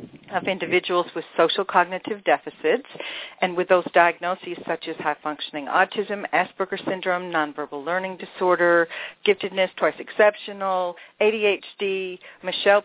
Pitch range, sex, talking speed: 165-205 Hz, female, 115 wpm